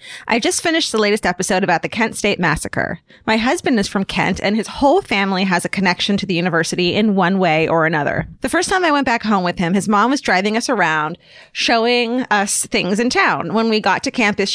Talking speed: 230 wpm